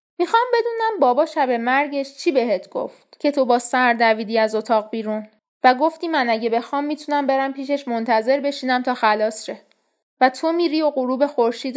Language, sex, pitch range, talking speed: Persian, female, 225-315 Hz, 180 wpm